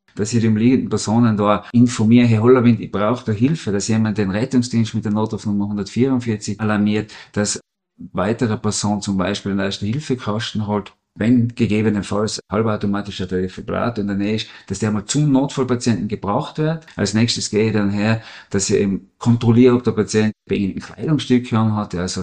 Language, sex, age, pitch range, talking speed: German, male, 50-69, 100-120 Hz, 170 wpm